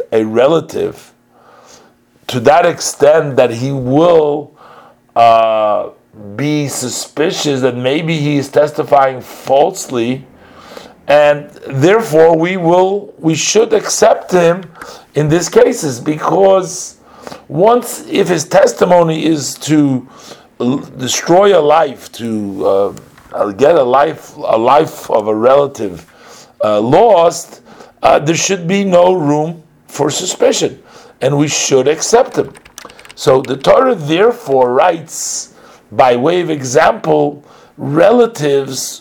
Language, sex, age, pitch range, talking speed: English, male, 50-69, 130-170 Hz, 115 wpm